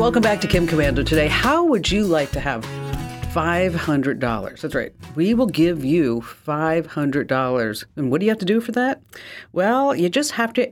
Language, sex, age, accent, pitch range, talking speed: English, female, 50-69, American, 125-175 Hz, 190 wpm